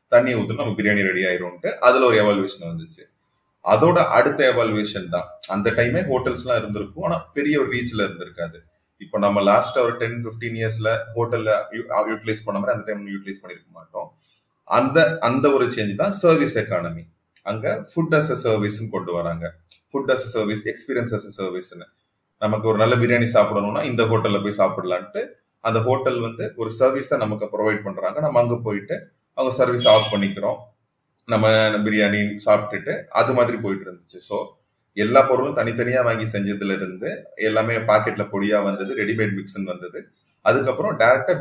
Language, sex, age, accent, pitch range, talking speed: Tamil, male, 30-49, native, 100-120 Hz, 145 wpm